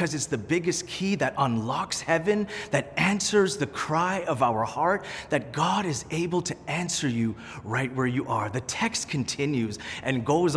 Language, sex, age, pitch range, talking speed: English, male, 30-49, 125-175 Hz, 170 wpm